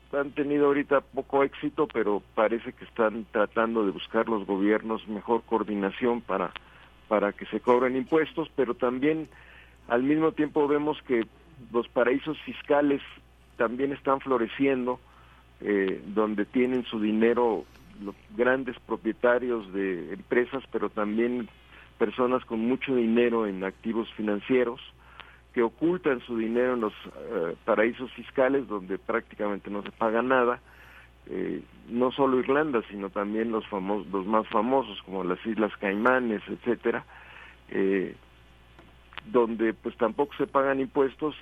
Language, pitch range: Spanish, 100-130 Hz